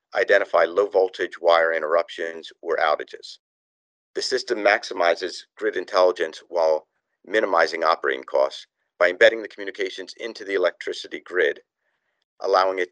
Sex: male